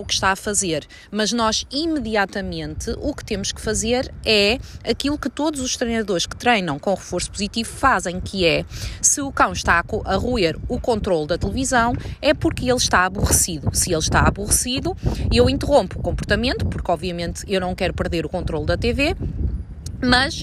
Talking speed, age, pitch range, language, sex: 180 wpm, 20-39, 195-270 Hz, Portuguese, female